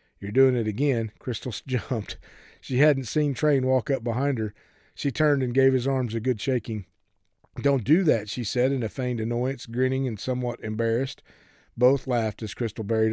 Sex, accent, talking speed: male, American, 185 wpm